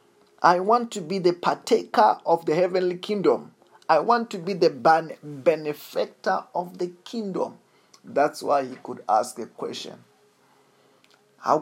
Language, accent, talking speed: English, South African, 140 wpm